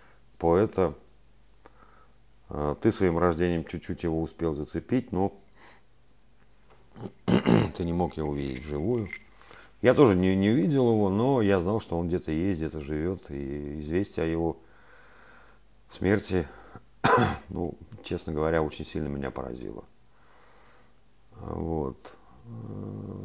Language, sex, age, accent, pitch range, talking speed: Russian, male, 50-69, native, 75-100 Hz, 110 wpm